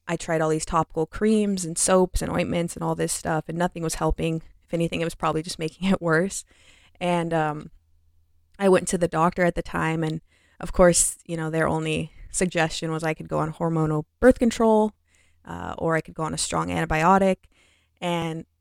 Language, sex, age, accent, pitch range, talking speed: English, female, 20-39, American, 150-170 Hz, 205 wpm